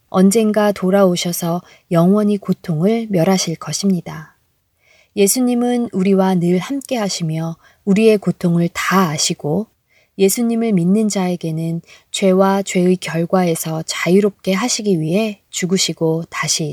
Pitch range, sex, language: 165-215 Hz, female, Korean